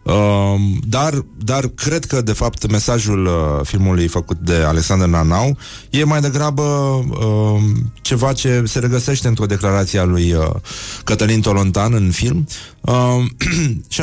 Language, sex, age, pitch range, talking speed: Romanian, male, 30-49, 90-120 Hz, 120 wpm